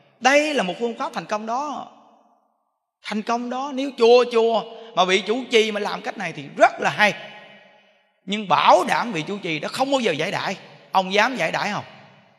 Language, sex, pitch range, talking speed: Vietnamese, male, 165-240 Hz, 210 wpm